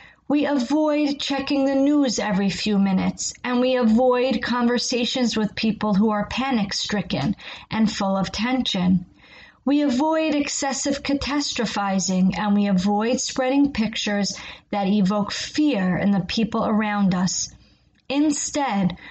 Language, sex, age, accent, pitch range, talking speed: English, female, 40-59, American, 200-255 Hz, 125 wpm